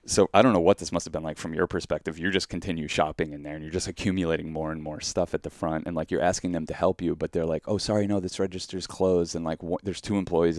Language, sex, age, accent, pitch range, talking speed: English, male, 30-49, American, 80-95 Hz, 295 wpm